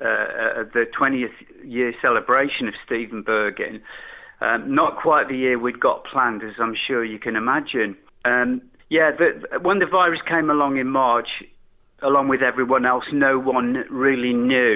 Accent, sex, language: British, male, English